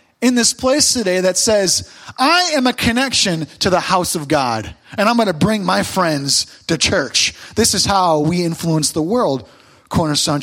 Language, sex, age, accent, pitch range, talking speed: English, male, 30-49, American, 150-240 Hz, 185 wpm